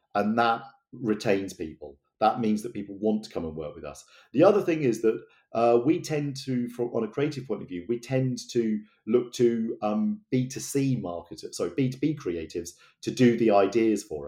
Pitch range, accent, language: 105-135 Hz, British, English